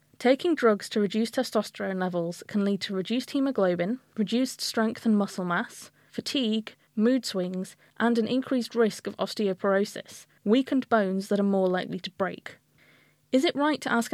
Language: English